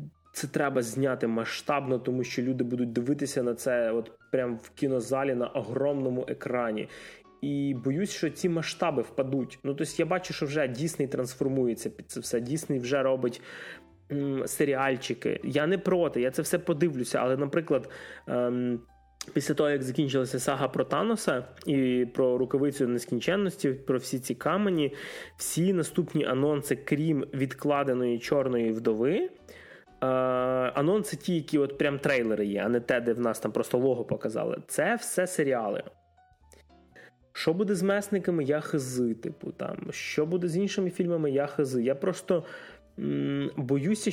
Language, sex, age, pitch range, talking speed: Ukrainian, male, 20-39, 130-175 Hz, 150 wpm